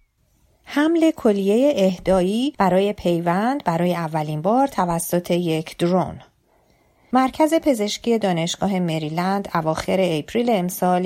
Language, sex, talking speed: Persian, female, 100 wpm